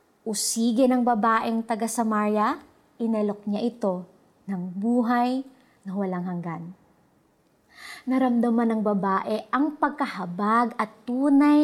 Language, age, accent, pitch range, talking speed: Filipino, 30-49, native, 200-270 Hz, 105 wpm